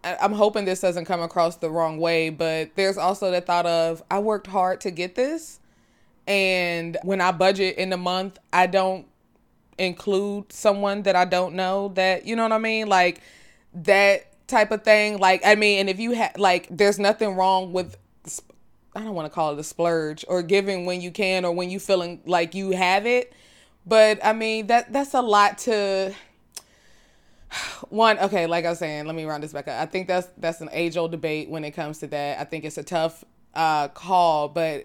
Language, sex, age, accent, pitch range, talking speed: English, female, 20-39, American, 170-205 Hz, 205 wpm